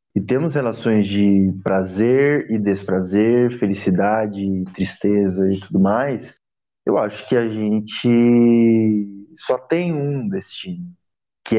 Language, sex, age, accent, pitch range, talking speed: Portuguese, male, 20-39, Brazilian, 95-135 Hz, 115 wpm